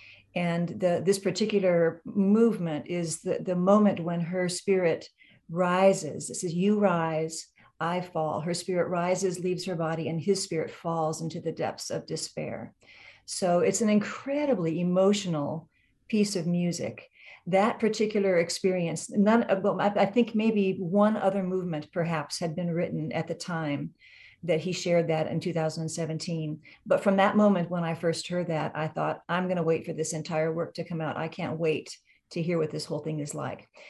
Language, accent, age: English, American, 50-69